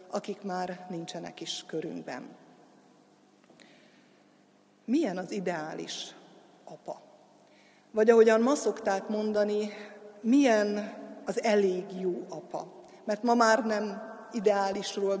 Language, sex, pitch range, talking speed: Hungarian, female, 190-220 Hz, 95 wpm